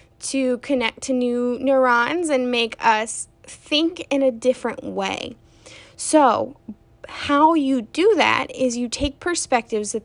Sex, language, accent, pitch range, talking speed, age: female, English, American, 210-285 Hz, 135 wpm, 10-29